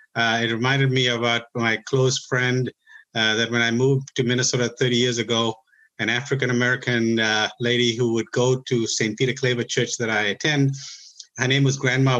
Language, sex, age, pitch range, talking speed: English, male, 50-69, 115-140 Hz, 185 wpm